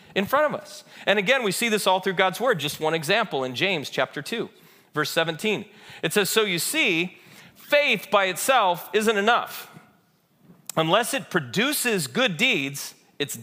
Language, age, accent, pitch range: English, 40-59, American, 170-215 Hz